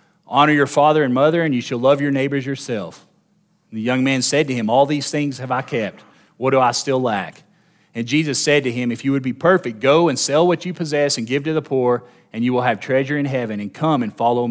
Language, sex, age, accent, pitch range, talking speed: English, male, 40-59, American, 125-155 Hz, 255 wpm